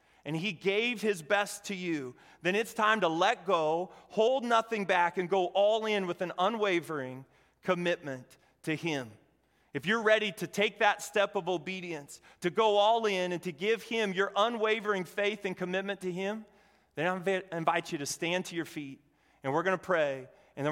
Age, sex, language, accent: 30-49, male, English, American